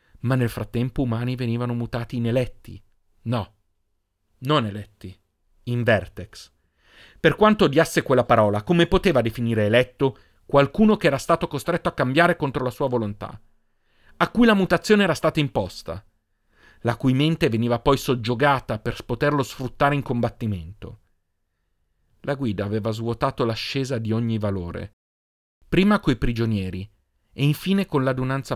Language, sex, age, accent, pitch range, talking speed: Italian, male, 40-59, native, 105-140 Hz, 140 wpm